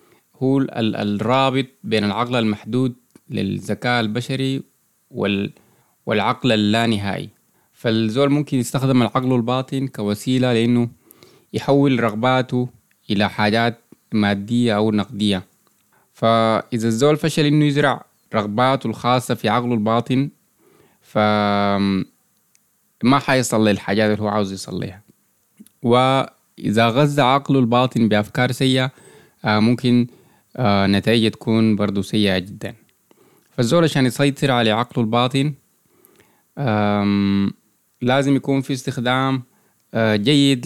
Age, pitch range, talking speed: 20-39, 105-130 Hz, 95 wpm